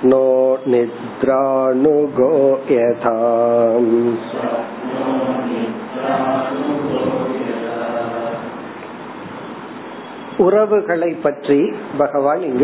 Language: Tamil